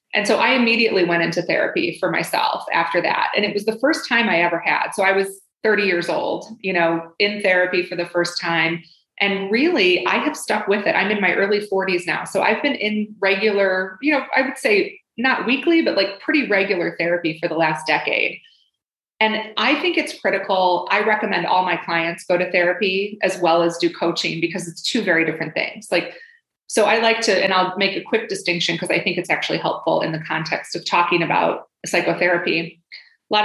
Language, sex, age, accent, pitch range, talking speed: English, female, 30-49, American, 175-220 Hz, 210 wpm